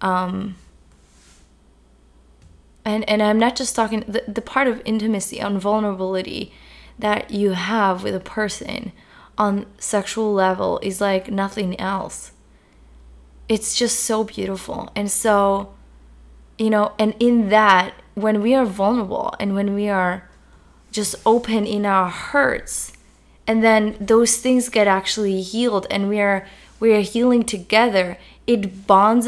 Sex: female